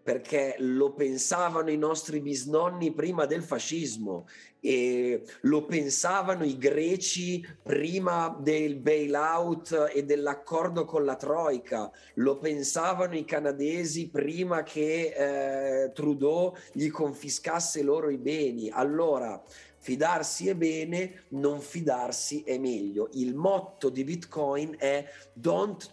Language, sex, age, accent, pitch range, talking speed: Italian, male, 30-49, native, 140-185 Hz, 115 wpm